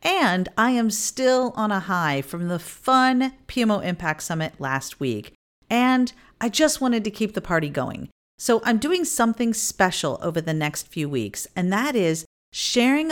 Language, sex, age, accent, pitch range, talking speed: English, female, 40-59, American, 150-225 Hz, 175 wpm